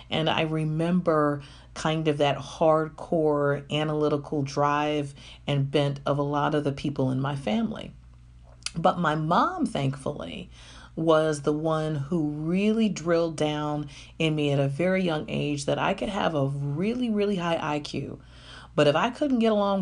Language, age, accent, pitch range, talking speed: English, 40-59, American, 140-165 Hz, 160 wpm